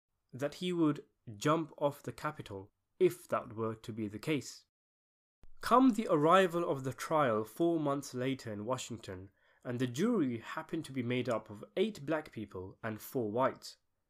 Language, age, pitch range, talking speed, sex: English, 20-39, 110-150 Hz, 170 wpm, male